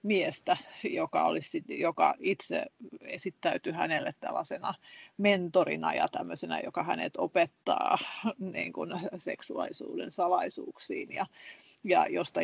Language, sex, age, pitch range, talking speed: Finnish, female, 30-49, 170-225 Hz, 95 wpm